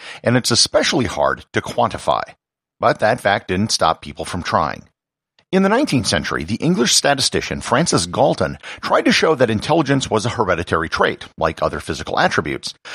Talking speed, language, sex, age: 165 wpm, English, male, 50-69